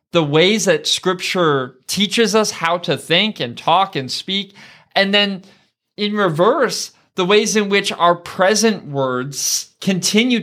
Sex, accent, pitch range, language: male, American, 140-185 Hz, English